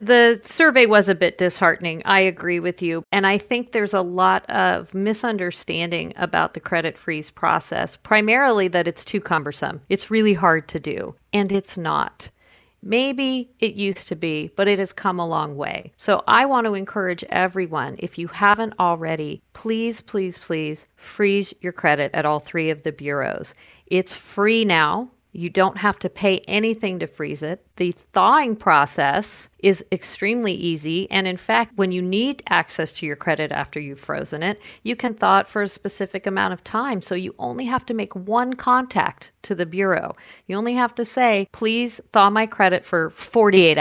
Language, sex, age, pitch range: English, female, 50-69, 170-215 Hz